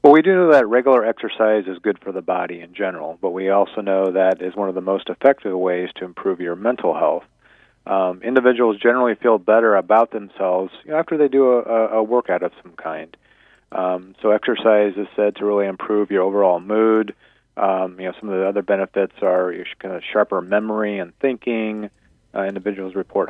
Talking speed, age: 200 wpm, 40-59